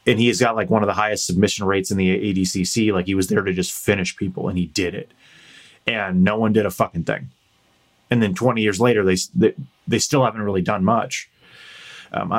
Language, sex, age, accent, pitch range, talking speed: English, male, 30-49, American, 95-120 Hz, 220 wpm